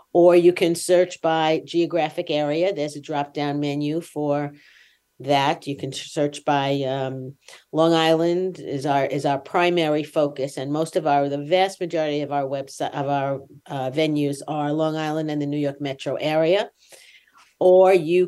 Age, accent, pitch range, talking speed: 50-69, American, 145-165 Hz, 165 wpm